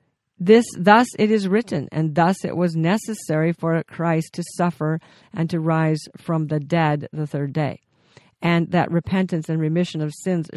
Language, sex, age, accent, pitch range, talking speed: English, female, 50-69, American, 150-185 Hz, 170 wpm